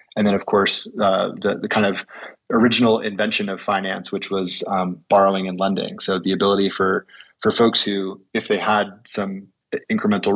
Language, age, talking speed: English, 20-39, 180 wpm